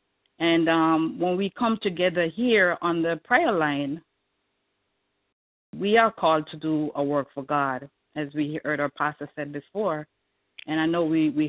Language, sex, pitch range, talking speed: English, female, 150-180 Hz, 165 wpm